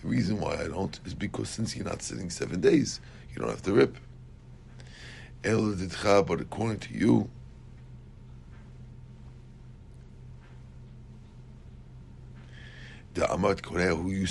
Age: 60-79